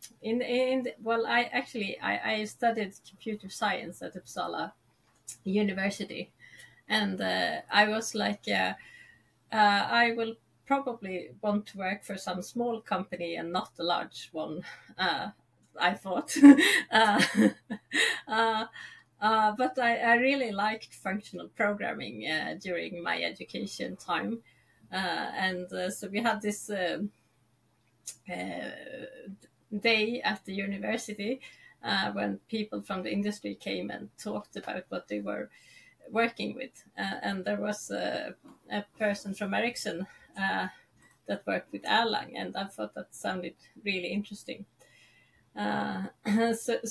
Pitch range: 190-230 Hz